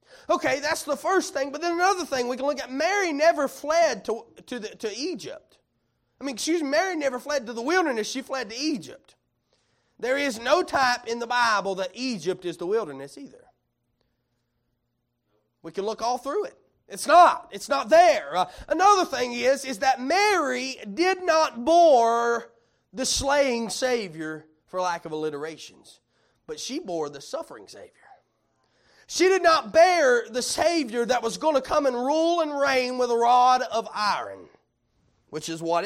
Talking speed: 175 wpm